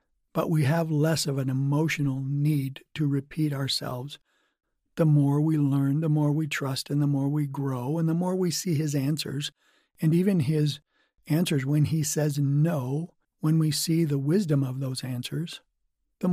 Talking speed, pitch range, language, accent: 175 wpm, 140-155 Hz, English, American